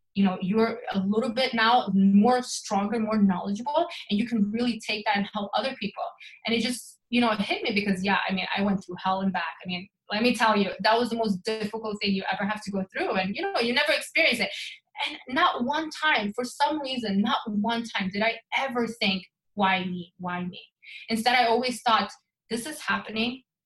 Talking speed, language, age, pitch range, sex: 225 wpm, English, 20-39, 200-245 Hz, female